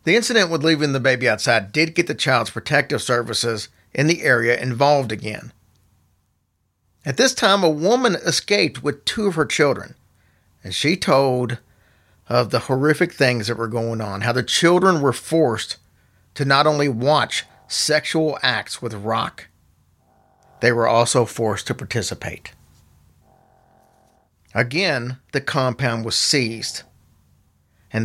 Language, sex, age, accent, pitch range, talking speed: English, male, 50-69, American, 110-150 Hz, 140 wpm